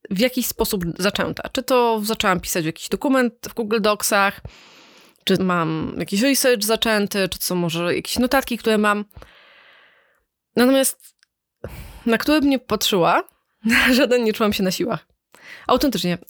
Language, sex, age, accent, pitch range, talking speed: Polish, female, 20-39, native, 200-255 Hz, 140 wpm